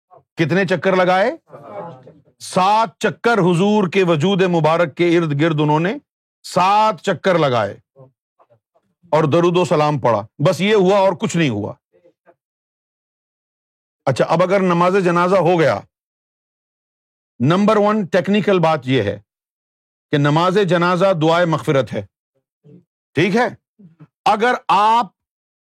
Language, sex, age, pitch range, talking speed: Urdu, male, 50-69, 155-205 Hz, 120 wpm